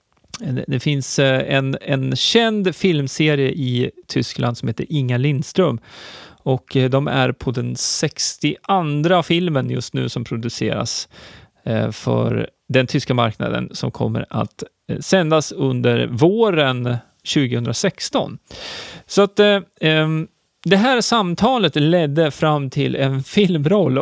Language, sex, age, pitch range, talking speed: Swedish, male, 30-49, 130-175 Hz, 115 wpm